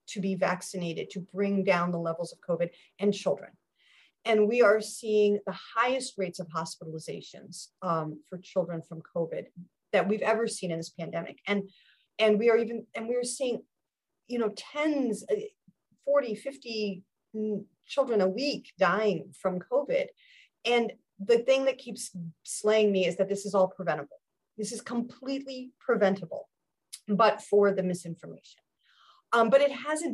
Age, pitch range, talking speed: 40-59, 190-255 Hz, 155 wpm